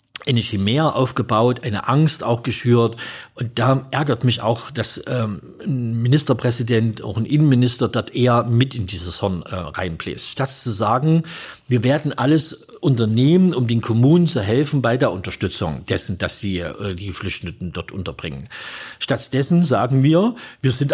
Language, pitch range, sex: German, 115-160 Hz, male